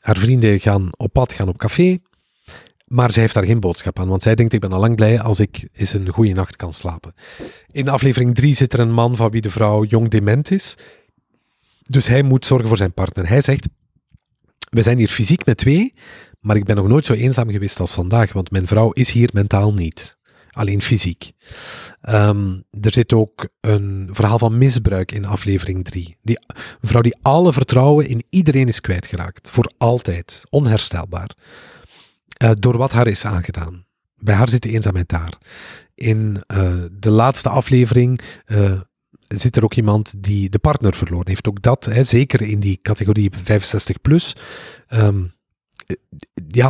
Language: Dutch